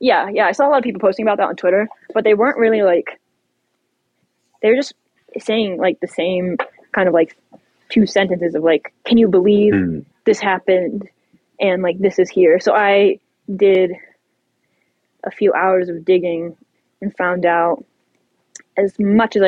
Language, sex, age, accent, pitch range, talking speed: English, female, 10-29, American, 180-215 Hz, 175 wpm